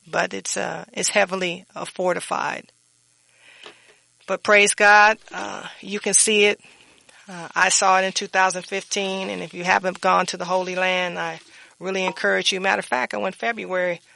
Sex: female